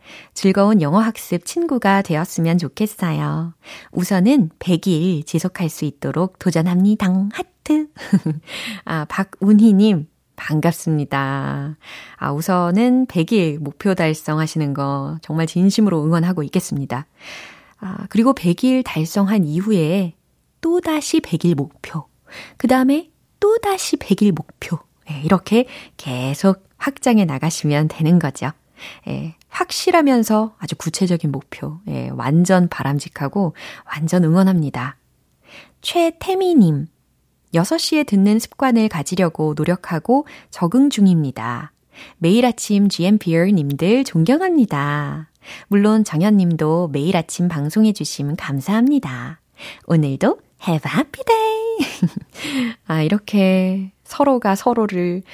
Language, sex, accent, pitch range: Korean, female, native, 160-220 Hz